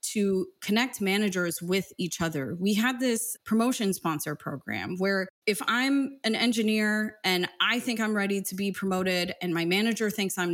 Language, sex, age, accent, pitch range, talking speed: English, female, 30-49, American, 175-225 Hz, 170 wpm